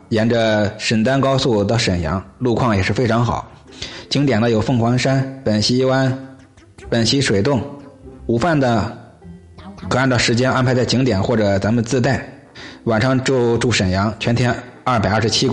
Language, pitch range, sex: Chinese, 105-135 Hz, male